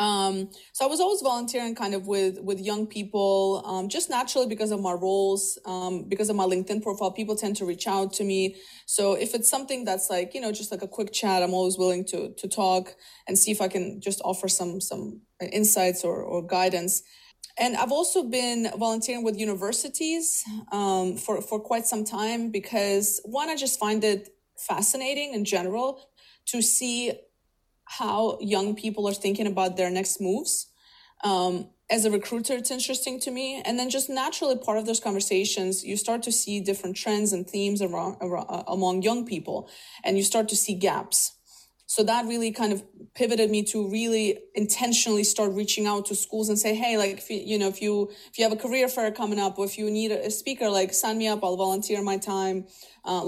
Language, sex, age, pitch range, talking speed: English, female, 20-39, 195-230 Hz, 200 wpm